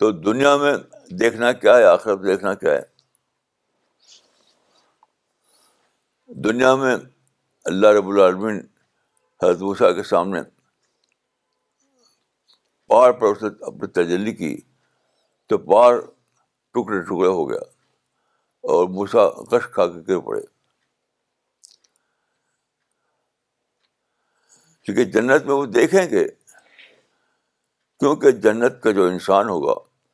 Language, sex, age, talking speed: Urdu, male, 60-79, 95 wpm